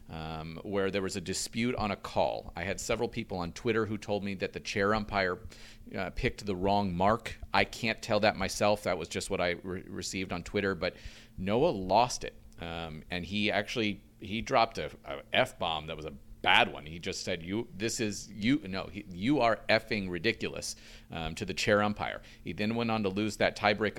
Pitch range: 95-115 Hz